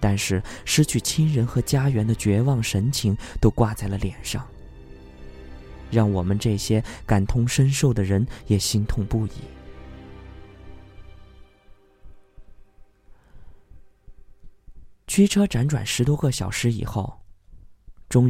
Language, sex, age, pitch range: Chinese, male, 20-39, 95-125 Hz